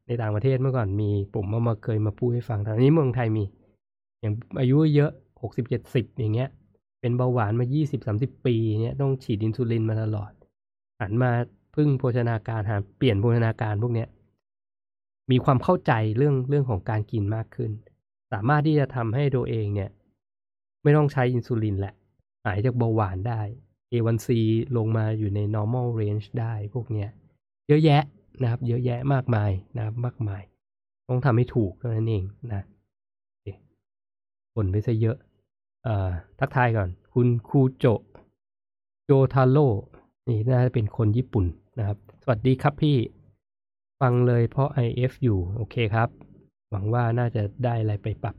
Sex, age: male, 20-39